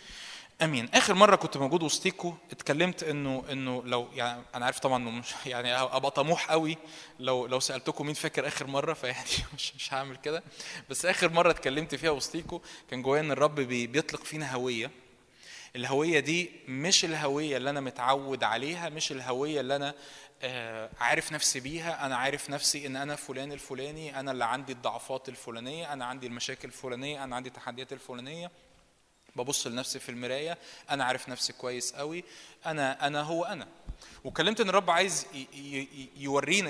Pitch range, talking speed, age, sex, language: 130-160 Hz, 165 wpm, 20-39, male, Arabic